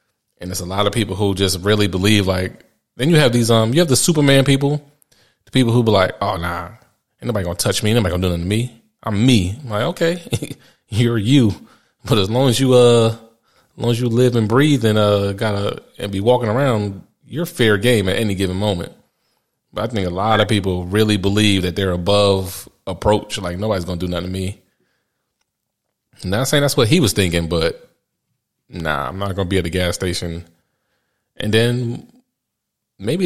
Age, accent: 30-49, American